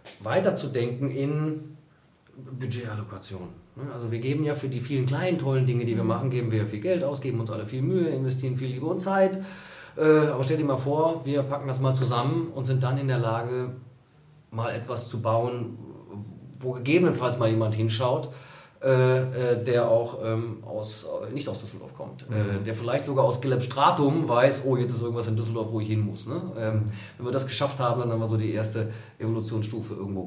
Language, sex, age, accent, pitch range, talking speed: German, male, 30-49, German, 110-135 Hz, 190 wpm